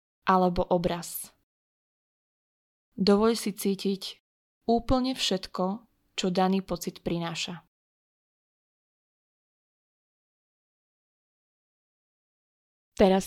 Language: Slovak